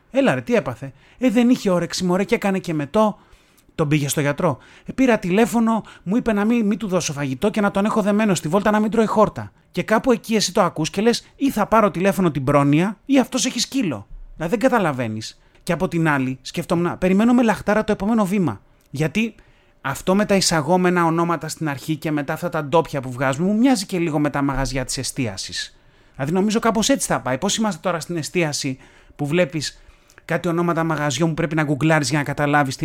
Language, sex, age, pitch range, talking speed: Greek, male, 30-49, 145-205 Hz, 215 wpm